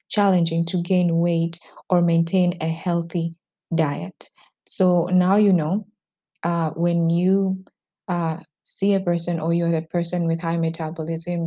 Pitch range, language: 165-185 Hz, English